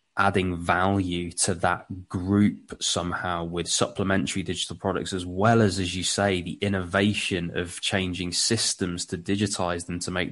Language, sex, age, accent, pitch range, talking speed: English, male, 20-39, British, 90-105 Hz, 150 wpm